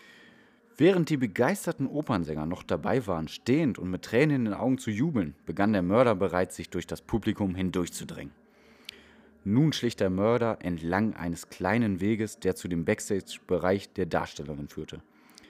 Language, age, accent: German, 30-49, German